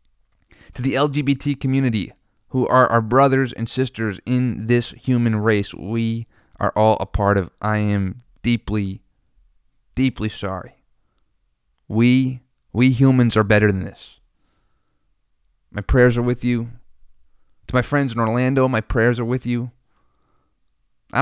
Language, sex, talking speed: English, male, 135 wpm